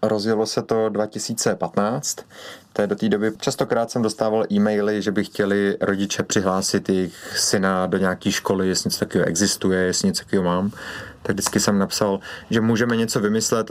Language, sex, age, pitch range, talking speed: Czech, male, 30-49, 95-115 Hz, 165 wpm